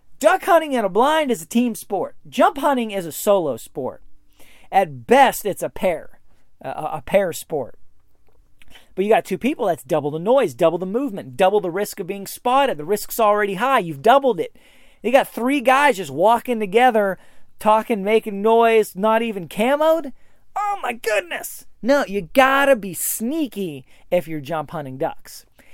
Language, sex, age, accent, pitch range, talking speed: English, male, 40-59, American, 195-275 Hz, 175 wpm